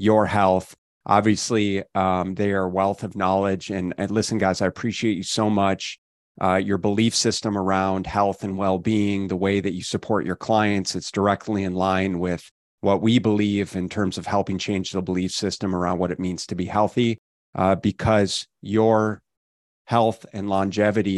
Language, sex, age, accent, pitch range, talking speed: English, male, 30-49, American, 95-105 Hz, 180 wpm